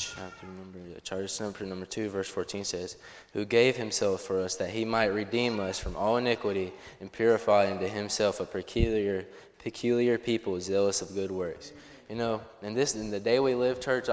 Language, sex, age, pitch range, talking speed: English, male, 20-39, 105-130 Hz, 185 wpm